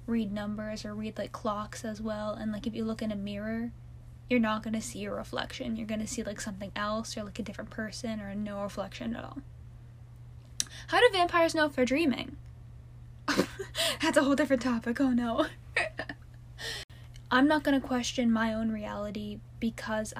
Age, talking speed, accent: 10-29, 185 wpm, American